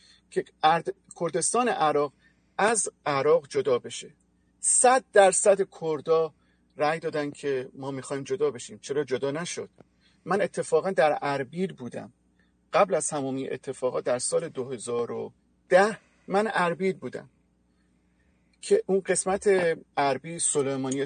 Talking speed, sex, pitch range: 120 wpm, male, 140-200 Hz